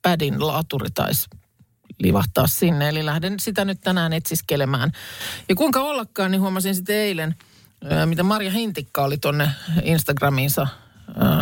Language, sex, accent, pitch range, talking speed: Finnish, male, native, 140-180 Hz, 125 wpm